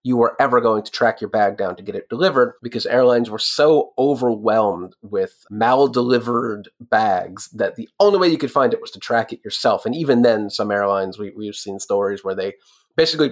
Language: English